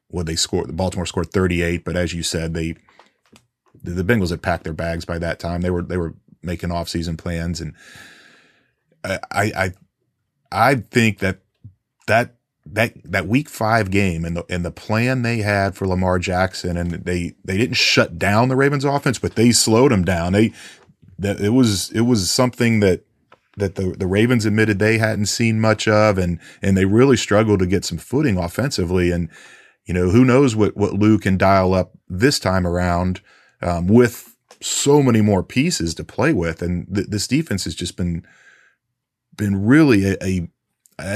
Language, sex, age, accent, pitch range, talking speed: English, male, 30-49, American, 90-110 Hz, 185 wpm